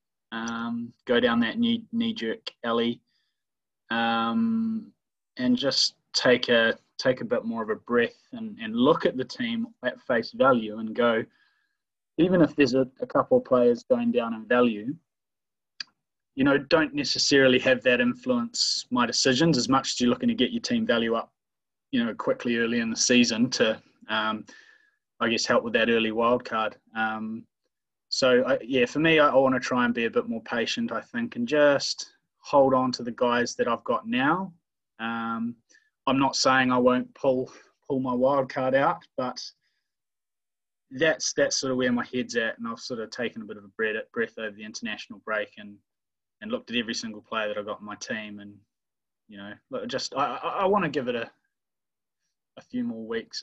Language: English